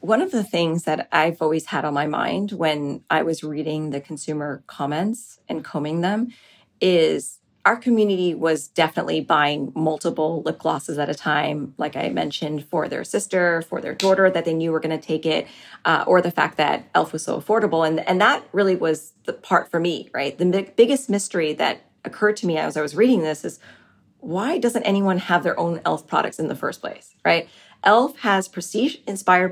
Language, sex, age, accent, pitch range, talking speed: English, female, 30-49, American, 160-215 Hz, 200 wpm